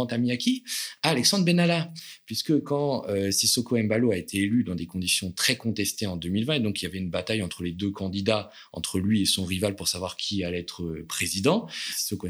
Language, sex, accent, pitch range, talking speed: French, male, French, 90-115 Hz, 210 wpm